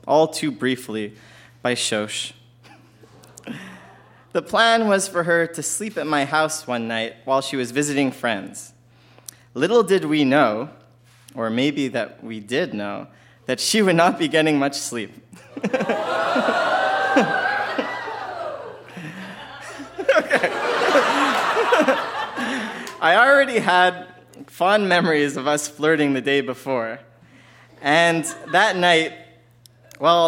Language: English